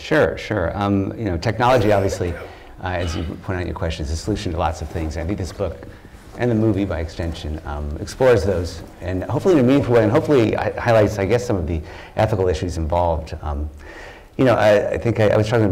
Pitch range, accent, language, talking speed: 80-100 Hz, American, English, 235 wpm